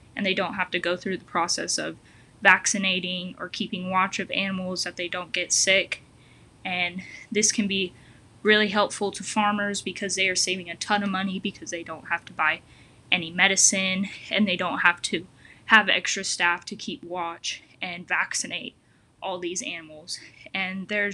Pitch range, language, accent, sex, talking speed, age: 175-200 Hz, English, American, female, 180 wpm, 10-29